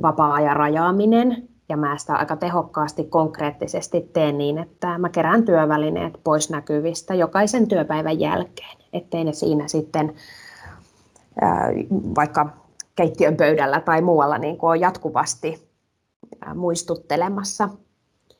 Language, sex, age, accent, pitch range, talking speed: Finnish, female, 20-39, native, 150-180 Hz, 105 wpm